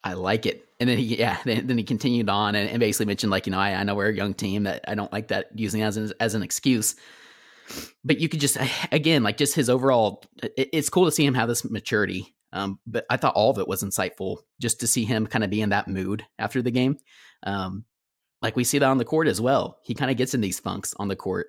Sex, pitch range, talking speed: male, 100-120 Hz, 270 wpm